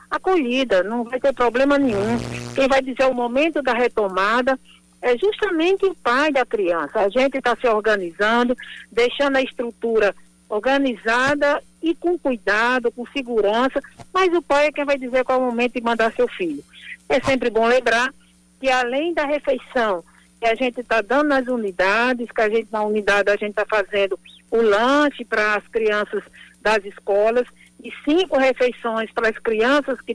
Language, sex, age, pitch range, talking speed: Portuguese, female, 60-79, 215-265 Hz, 170 wpm